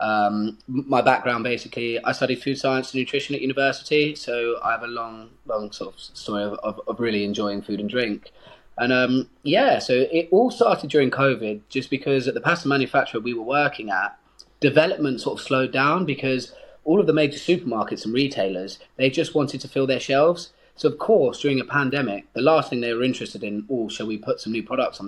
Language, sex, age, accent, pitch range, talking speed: English, male, 20-39, British, 120-145 Hz, 215 wpm